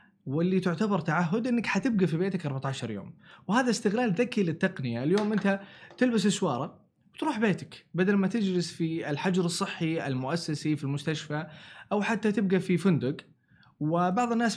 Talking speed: 145 wpm